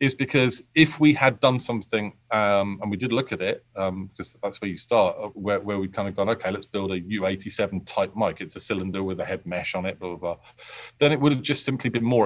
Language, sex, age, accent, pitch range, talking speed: English, male, 40-59, British, 95-120 Hz, 260 wpm